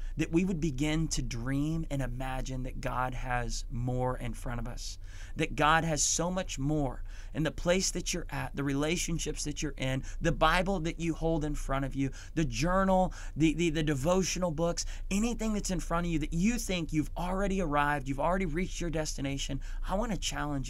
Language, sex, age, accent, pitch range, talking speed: English, male, 30-49, American, 115-150 Hz, 205 wpm